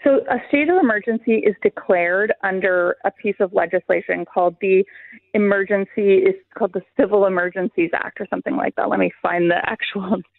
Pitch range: 185-220 Hz